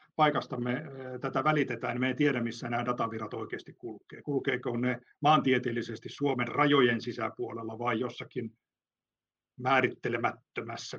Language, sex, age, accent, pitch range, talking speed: Finnish, male, 50-69, native, 120-140 Hz, 120 wpm